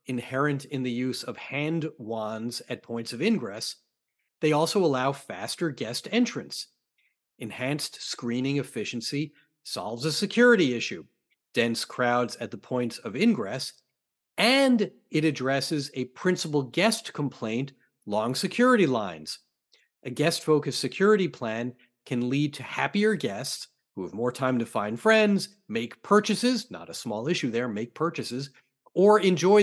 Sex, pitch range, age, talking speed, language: male, 130-180 Hz, 40-59, 140 wpm, English